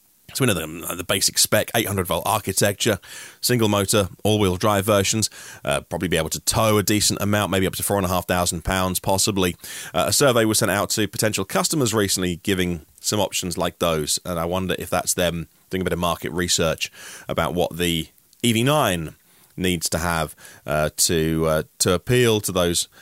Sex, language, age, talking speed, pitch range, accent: male, English, 30-49, 175 wpm, 90-125 Hz, British